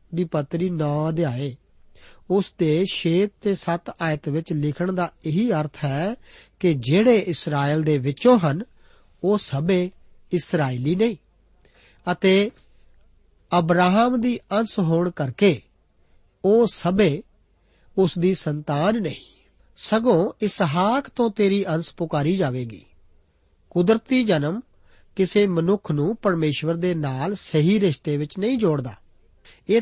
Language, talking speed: Punjabi, 95 wpm